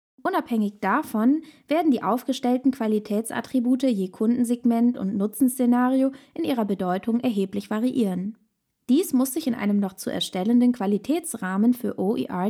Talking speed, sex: 125 wpm, female